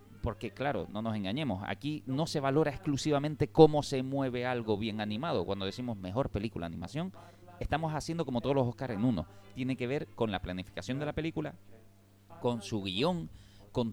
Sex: male